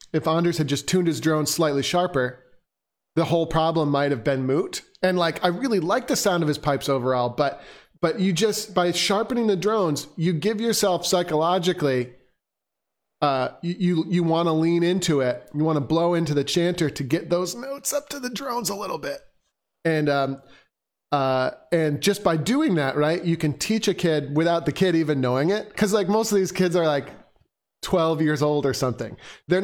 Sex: male